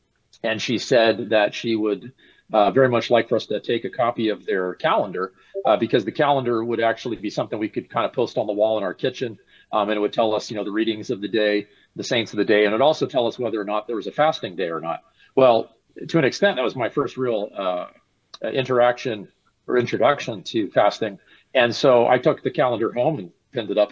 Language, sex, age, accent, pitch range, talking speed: English, male, 40-59, American, 110-135 Hz, 245 wpm